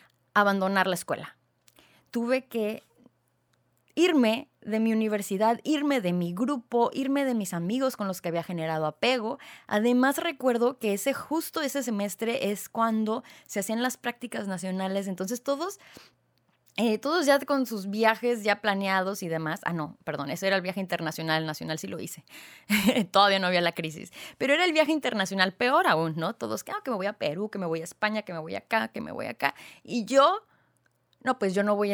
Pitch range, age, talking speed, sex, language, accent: 180-245 Hz, 20-39, 190 wpm, female, Spanish, Mexican